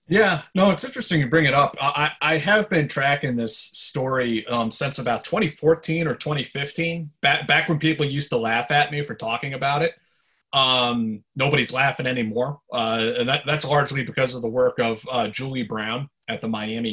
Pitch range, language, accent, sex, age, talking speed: 115-145 Hz, English, American, male, 30-49, 190 wpm